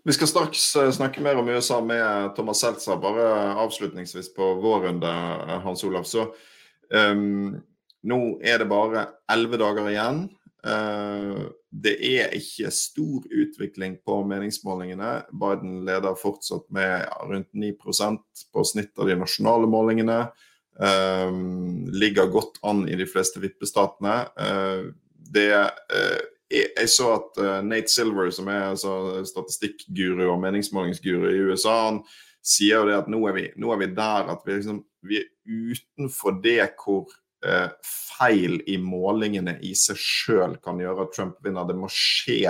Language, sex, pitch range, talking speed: English, male, 95-110 Hz, 145 wpm